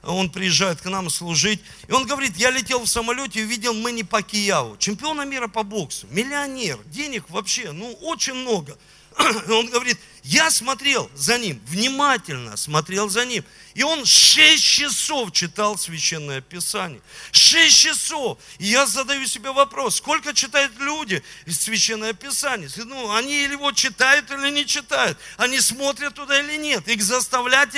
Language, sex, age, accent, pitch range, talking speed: Russian, male, 40-59, native, 190-280 Hz, 155 wpm